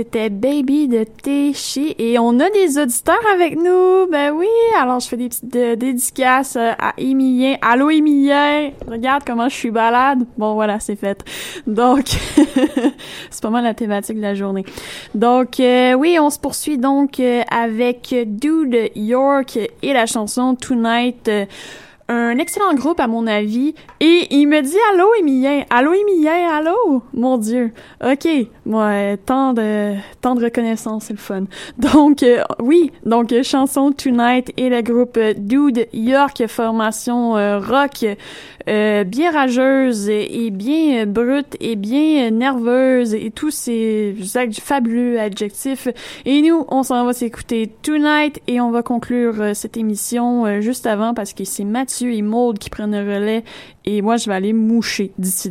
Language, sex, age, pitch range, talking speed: French, female, 20-39, 225-280 Hz, 165 wpm